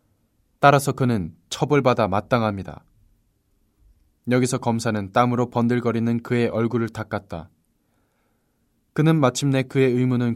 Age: 20-39